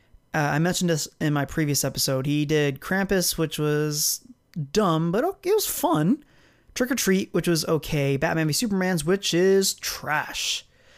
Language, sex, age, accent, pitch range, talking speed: English, male, 30-49, American, 145-175 Hz, 170 wpm